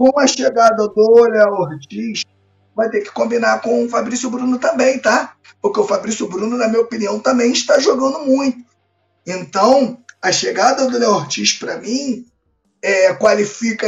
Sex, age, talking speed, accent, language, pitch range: male, 20-39, 160 wpm, Brazilian, Portuguese, 190-250 Hz